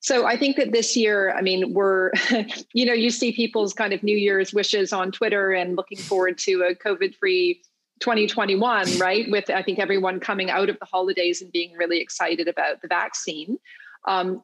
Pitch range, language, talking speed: 175-225 Hz, English, 190 wpm